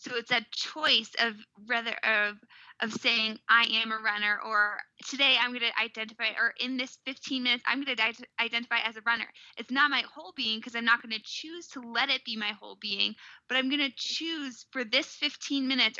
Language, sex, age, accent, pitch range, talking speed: English, female, 10-29, American, 220-265 Hz, 220 wpm